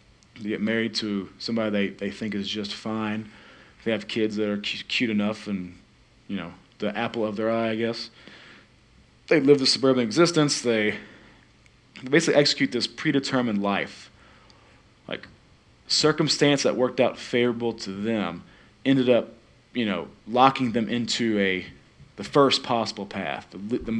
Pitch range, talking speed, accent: 100-125 Hz, 155 wpm, American